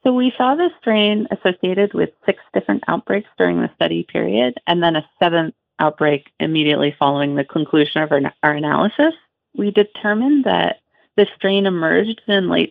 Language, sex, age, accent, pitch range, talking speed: English, female, 40-59, American, 155-205 Hz, 165 wpm